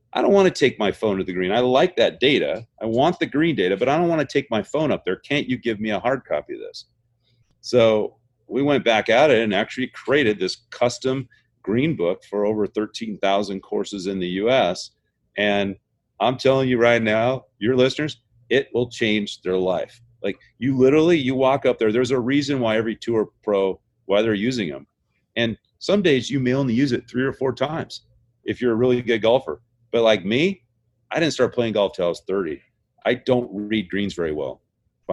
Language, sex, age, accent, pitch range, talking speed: English, male, 40-59, American, 105-130 Hz, 215 wpm